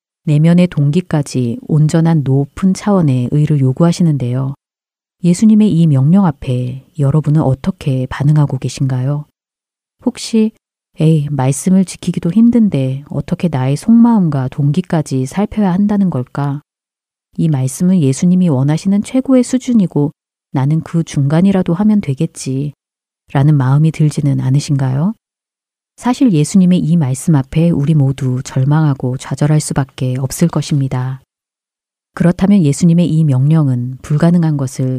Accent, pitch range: native, 135-180 Hz